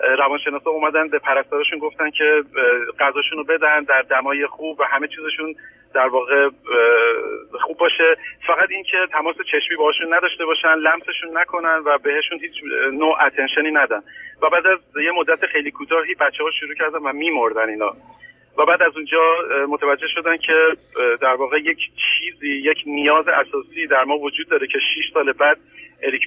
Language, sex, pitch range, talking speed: Persian, male, 145-190 Hz, 160 wpm